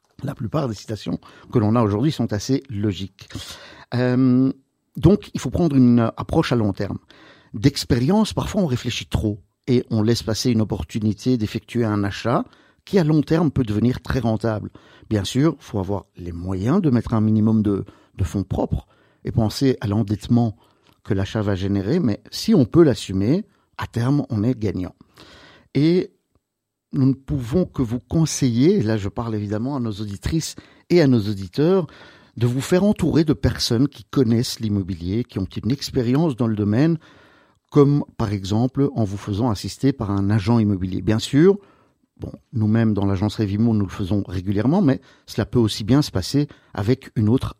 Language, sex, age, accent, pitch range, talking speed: French, male, 50-69, French, 105-135 Hz, 180 wpm